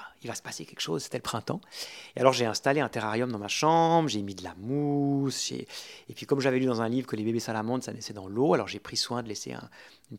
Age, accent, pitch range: 30-49, French, 115-155 Hz